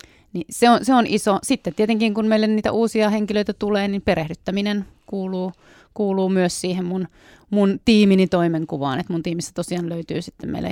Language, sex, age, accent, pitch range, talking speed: Finnish, female, 30-49, native, 175-200 Hz, 175 wpm